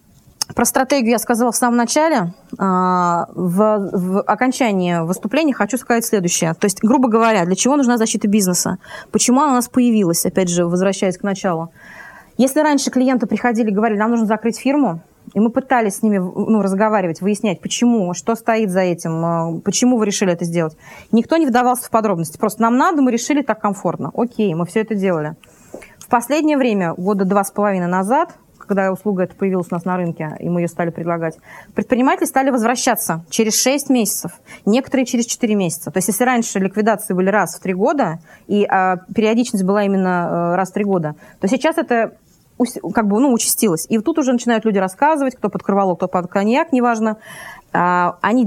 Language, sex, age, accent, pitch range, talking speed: Russian, female, 20-39, native, 185-245 Hz, 185 wpm